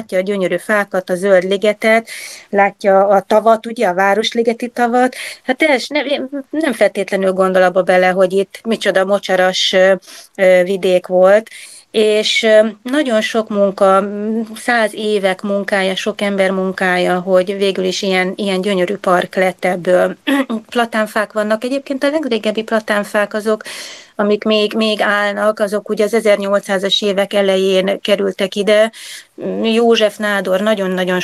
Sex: female